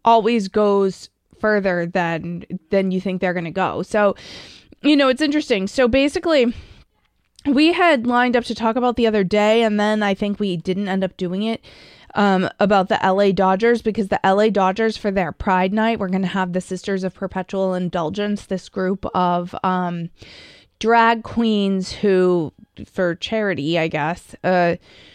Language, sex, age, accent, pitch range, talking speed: English, female, 20-39, American, 180-225 Hz, 170 wpm